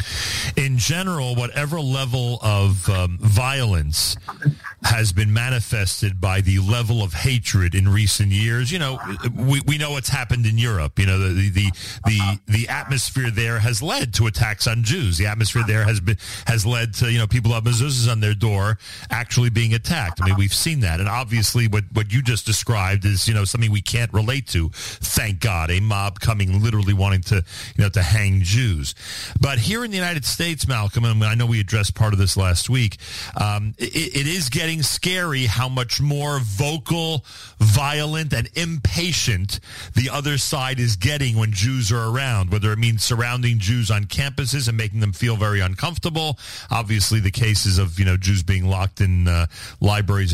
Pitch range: 100-130 Hz